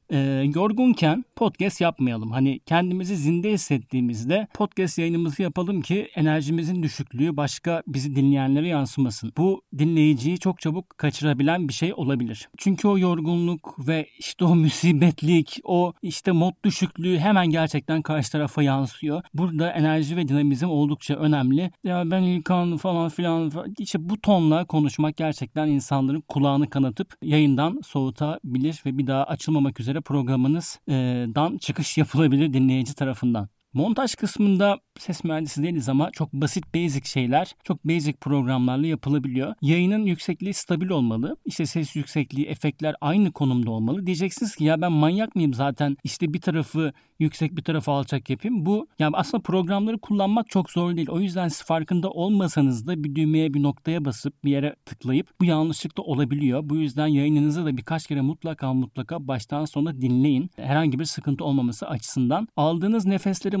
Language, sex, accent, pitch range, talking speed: Turkish, male, native, 140-180 Hz, 145 wpm